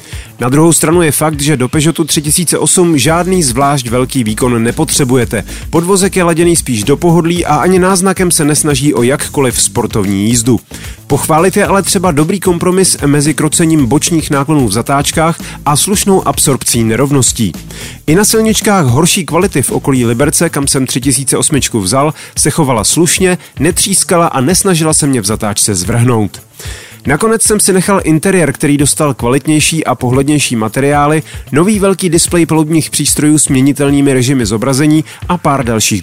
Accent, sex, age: native, male, 30-49